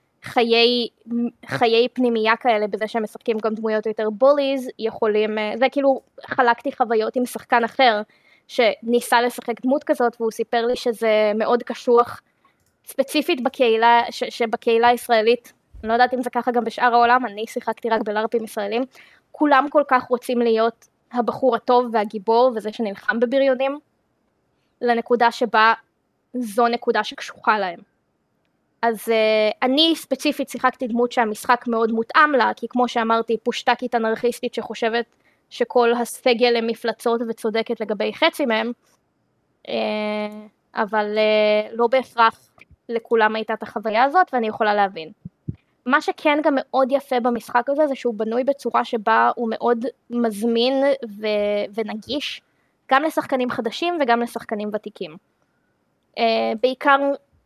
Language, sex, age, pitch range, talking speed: Hebrew, female, 20-39, 225-255 Hz, 130 wpm